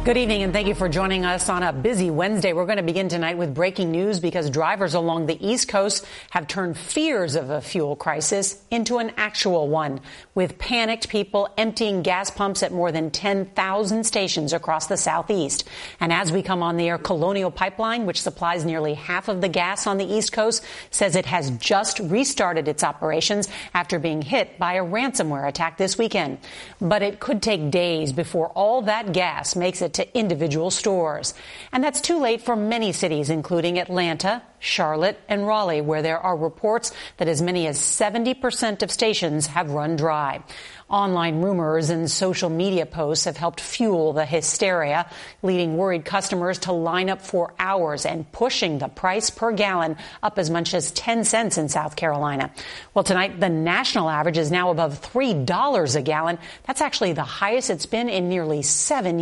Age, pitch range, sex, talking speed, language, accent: 40-59, 165-210 Hz, female, 185 wpm, English, American